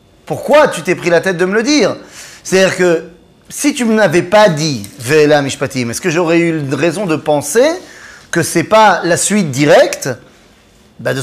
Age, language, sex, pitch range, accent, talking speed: 30-49, French, male, 145-185 Hz, French, 210 wpm